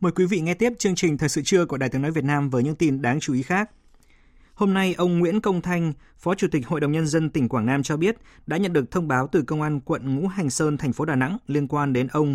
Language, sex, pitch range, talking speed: Vietnamese, male, 130-165 Hz, 295 wpm